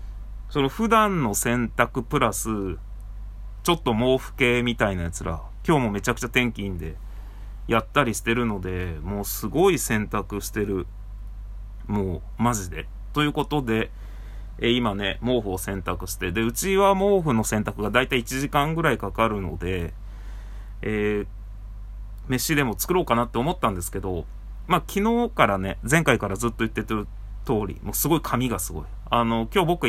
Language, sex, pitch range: Japanese, male, 100-140 Hz